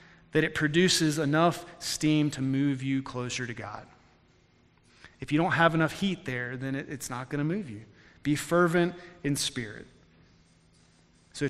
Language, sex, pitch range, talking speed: English, male, 130-160 Hz, 150 wpm